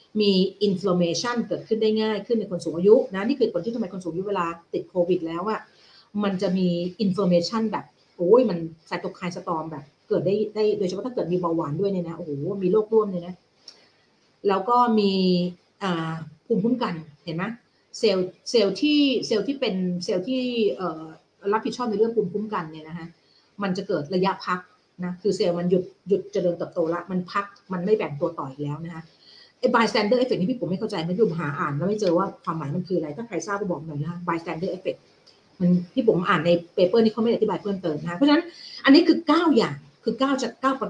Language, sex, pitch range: Thai, female, 175-220 Hz